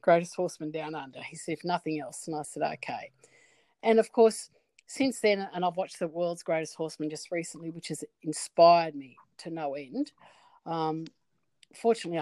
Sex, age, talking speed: female, 50-69, 170 wpm